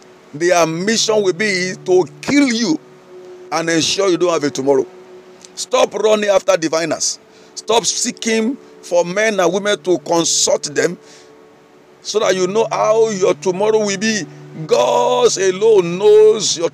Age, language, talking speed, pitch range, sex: 50-69, English, 145 wpm, 160-225 Hz, male